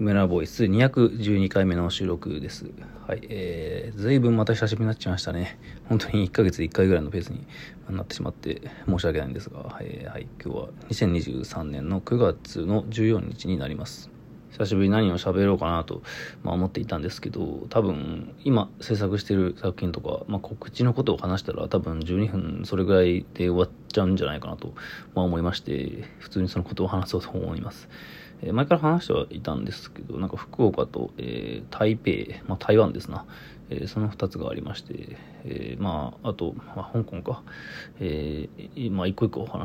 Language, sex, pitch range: Japanese, male, 90-110 Hz